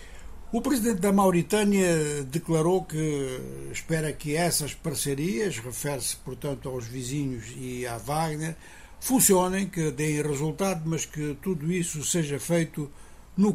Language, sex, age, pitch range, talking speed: Portuguese, male, 60-79, 135-170 Hz, 125 wpm